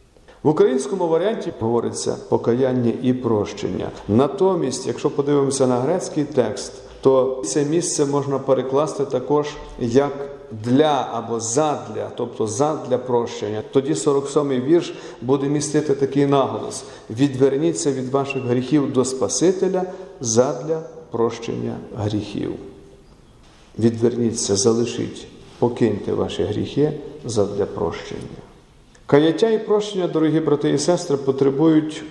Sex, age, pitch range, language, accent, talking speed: male, 50-69, 120-150 Hz, Ukrainian, native, 105 wpm